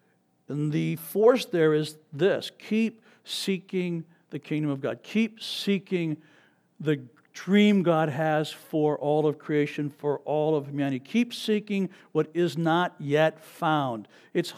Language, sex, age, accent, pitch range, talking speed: English, male, 60-79, American, 155-215 Hz, 140 wpm